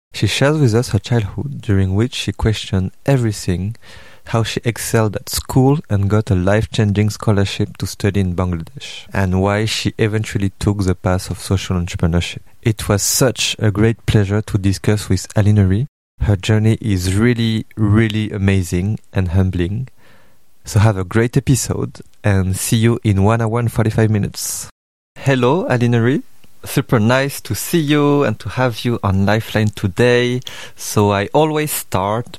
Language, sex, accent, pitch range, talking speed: English, male, French, 100-115 Hz, 155 wpm